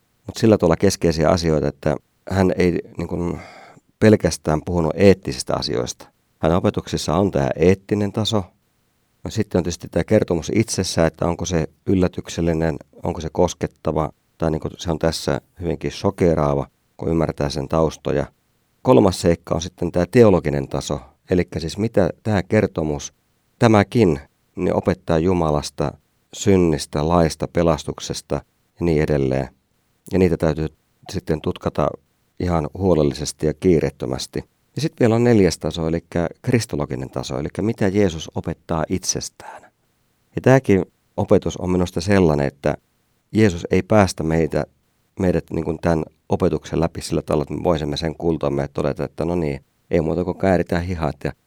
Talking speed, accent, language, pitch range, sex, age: 140 wpm, native, Finnish, 75-95 Hz, male, 50-69